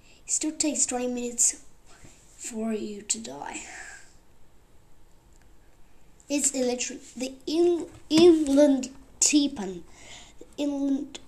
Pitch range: 240-335 Hz